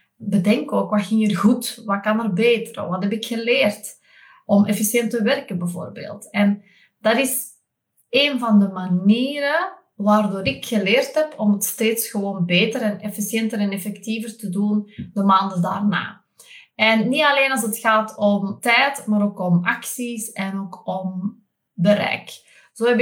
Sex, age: female, 20-39